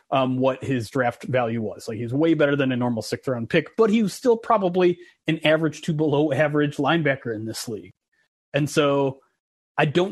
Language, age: English, 30-49